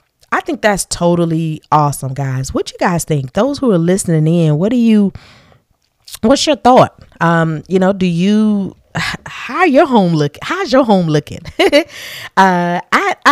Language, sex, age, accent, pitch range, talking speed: English, female, 20-39, American, 145-185 Hz, 160 wpm